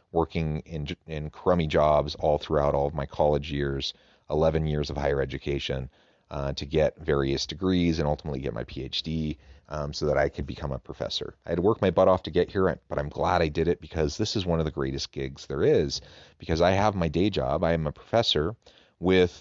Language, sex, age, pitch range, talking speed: English, male, 30-49, 70-85 Hz, 225 wpm